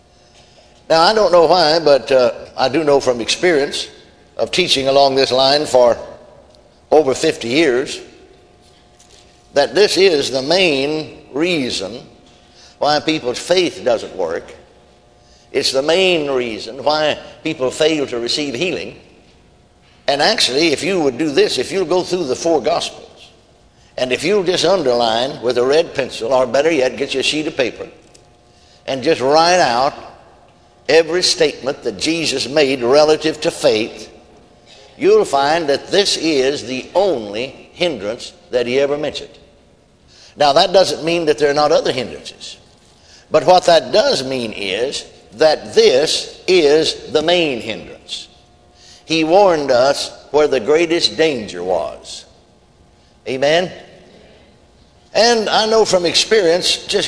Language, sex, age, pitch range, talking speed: English, male, 60-79, 140-220 Hz, 140 wpm